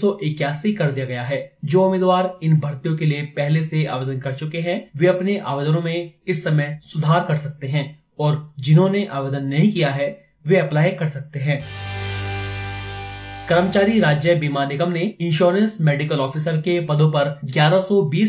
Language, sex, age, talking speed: Hindi, male, 30-49, 165 wpm